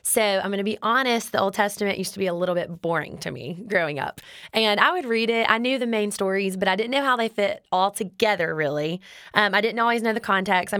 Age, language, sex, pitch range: 20-39, English, female, 180-215 Hz